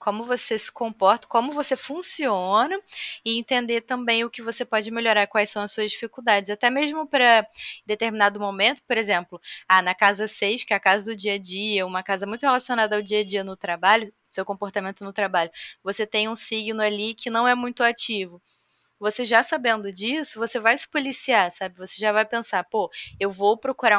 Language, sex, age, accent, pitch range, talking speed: Portuguese, female, 20-39, Brazilian, 200-235 Hz, 190 wpm